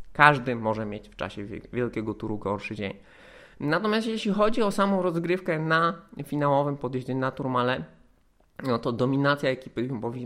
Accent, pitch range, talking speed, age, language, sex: native, 140-185 Hz, 145 wpm, 20-39, Polish, male